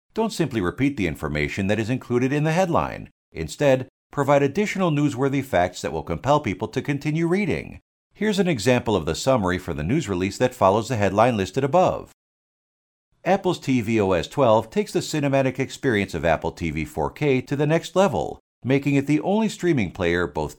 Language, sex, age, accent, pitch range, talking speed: English, male, 50-69, American, 100-150 Hz, 180 wpm